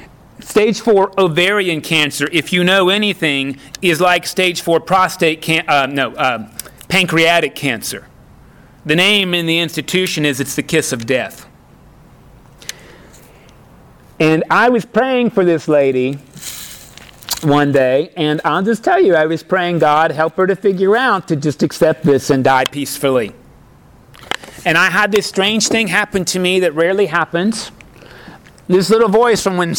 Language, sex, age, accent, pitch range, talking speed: English, male, 40-59, American, 145-180 Hz, 155 wpm